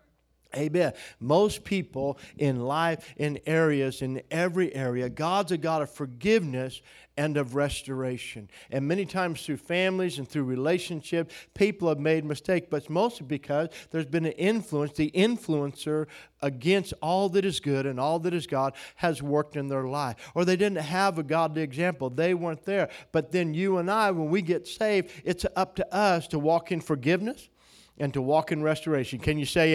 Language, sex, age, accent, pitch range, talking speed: English, male, 50-69, American, 145-180 Hz, 180 wpm